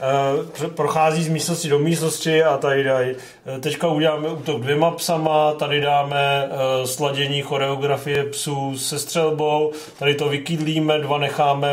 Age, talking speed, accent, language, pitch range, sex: 40-59, 130 wpm, native, Czech, 140-160 Hz, male